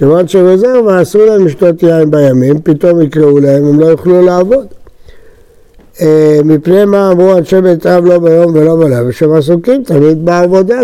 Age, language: 60-79, Hebrew